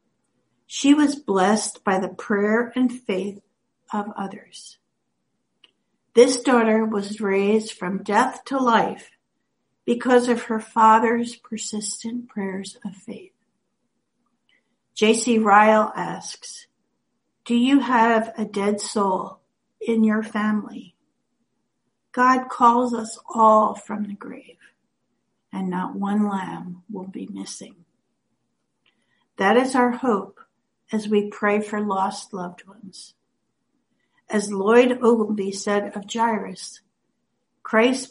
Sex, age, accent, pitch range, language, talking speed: female, 60-79, American, 200-240 Hz, English, 110 wpm